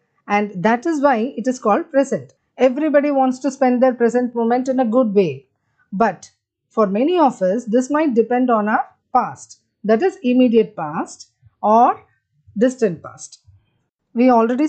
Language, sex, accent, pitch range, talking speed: English, female, Indian, 185-255 Hz, 160 wpm